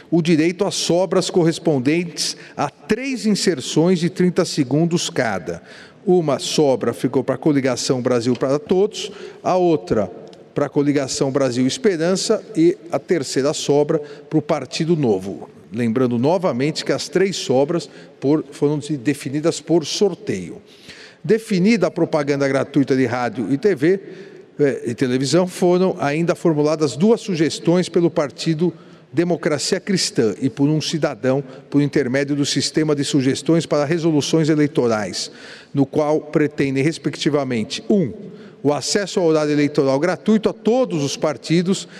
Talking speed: 135 wpm